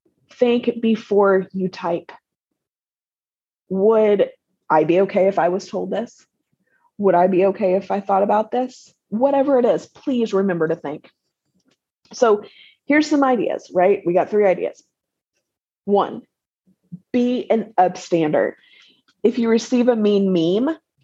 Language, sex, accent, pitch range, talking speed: English, female, American, 180-240 Hz, 135 wpm